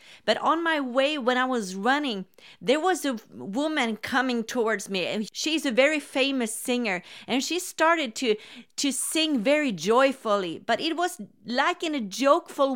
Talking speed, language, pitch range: 170 wpm, English, 230-295 Hz